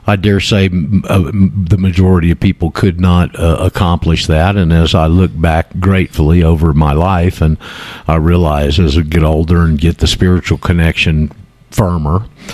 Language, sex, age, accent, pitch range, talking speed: English, male, 50-69, American, 80-100 Hz, 165 wpm